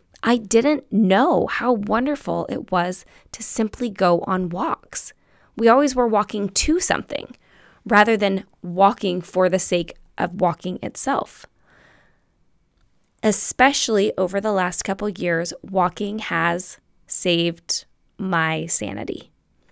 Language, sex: English, female